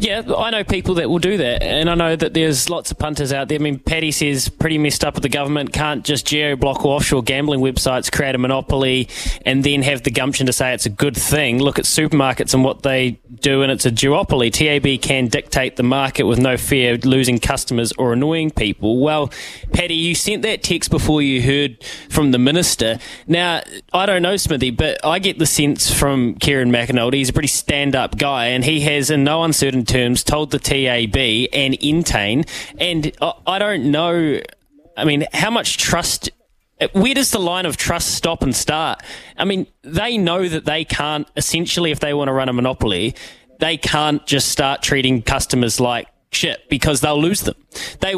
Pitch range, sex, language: 130-160 Hz, male, English